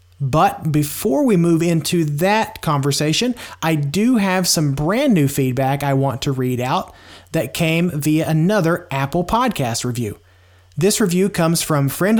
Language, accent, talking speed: English, American, 155 wpm